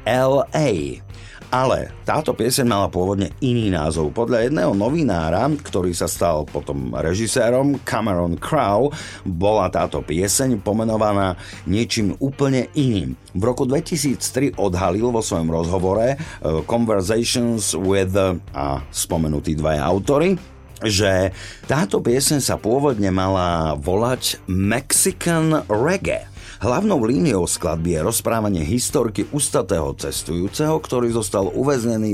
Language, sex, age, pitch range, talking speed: Slovak, male, 50-69, 85-120 Hz, 110 wpm